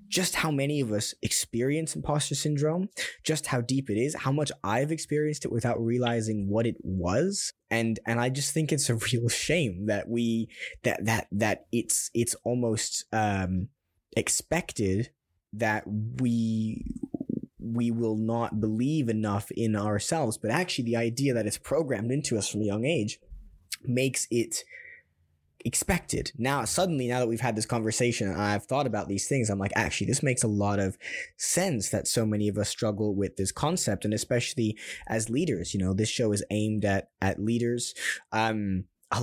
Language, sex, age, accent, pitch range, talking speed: English, male, 20-39, American, 105-125 Hz, 175 wpm